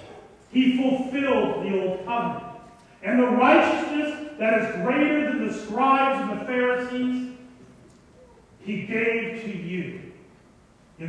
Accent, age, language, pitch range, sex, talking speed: American, 40-59, English, 190-270 Hz, male, 120 wpm